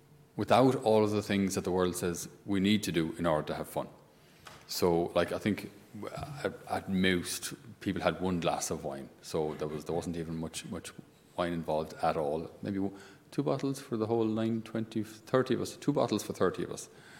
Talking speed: 205 wpm